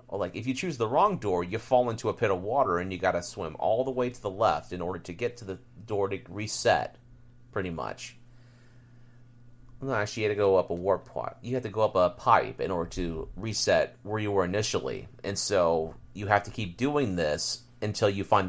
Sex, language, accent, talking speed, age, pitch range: male, English, American, 230 wpm, 30-49, 100-125 Hz